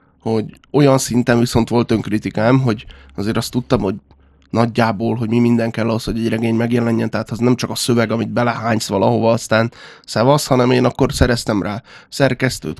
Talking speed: 180 wpm